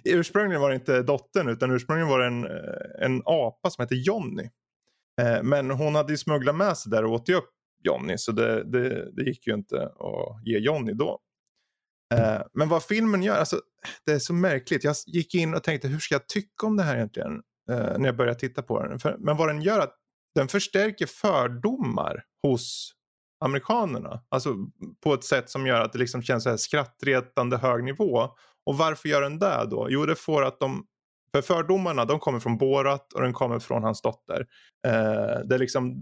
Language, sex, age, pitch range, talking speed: Swedish, male, 20-39, 120-160 Hz, 195 wpm